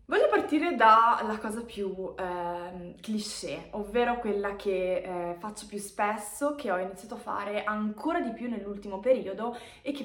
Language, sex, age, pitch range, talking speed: Italian, female, 20-39, 205-280 Hz, 155 wpm